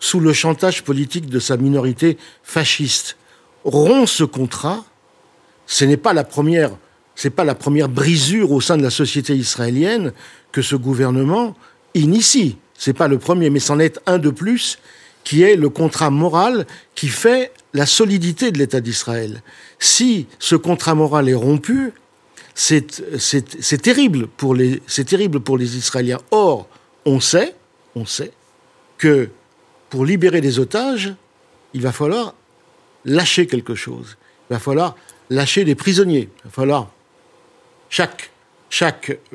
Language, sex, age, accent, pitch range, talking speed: French, male, 50-69, French, 135-185 Hz, 150 wpm